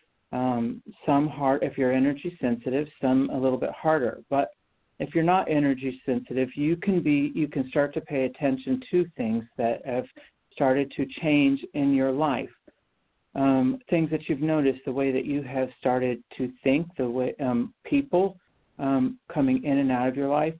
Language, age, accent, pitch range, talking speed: English, 50-69, American, 130-155 Hz, 180 wpm